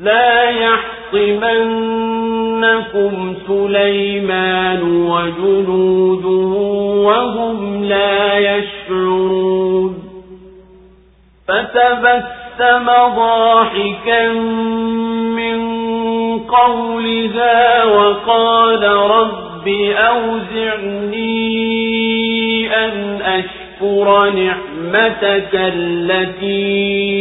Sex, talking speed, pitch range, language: male, 40 wpm, 185-225 Hz, Swahili